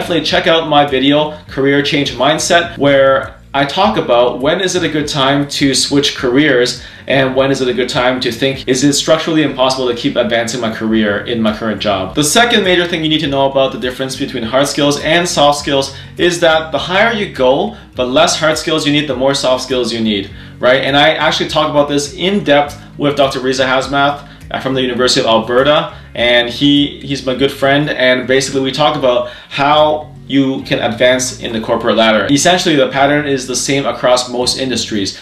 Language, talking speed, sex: English, 210 wpm, male